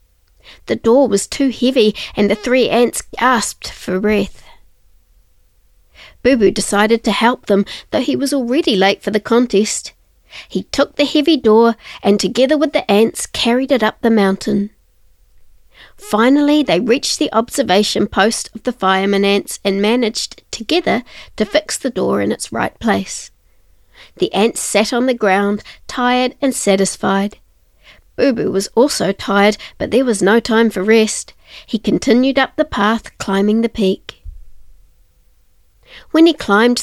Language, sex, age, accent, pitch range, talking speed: English, female, 40-59, Australian, 200-260 Hz, 155 wpm